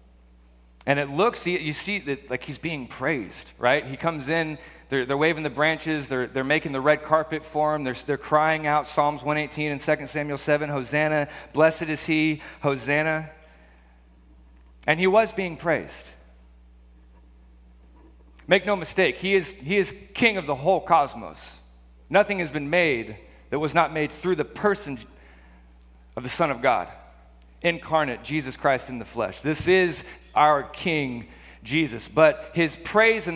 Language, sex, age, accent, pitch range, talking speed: English, male, 40-59, American, 115-165 Hz, 160 wpm